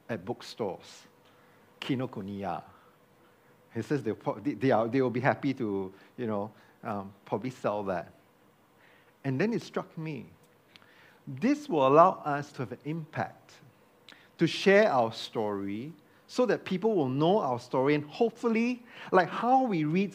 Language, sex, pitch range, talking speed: English, male, 125-190 Hz, 135 wpm